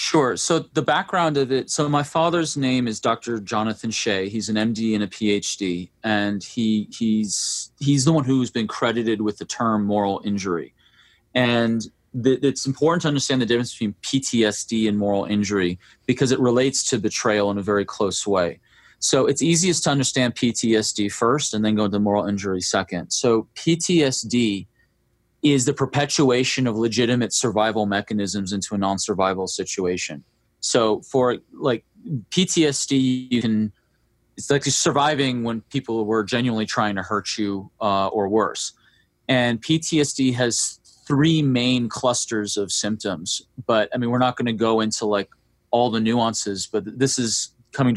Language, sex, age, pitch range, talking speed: English, male, 30-49, 105-130 Hz, 165 wpm